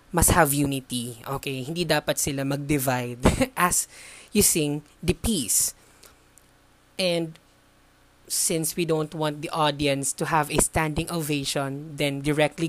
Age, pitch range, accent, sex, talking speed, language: 20-39, 140-180 Hz, Filipino, female, 130 wpm, English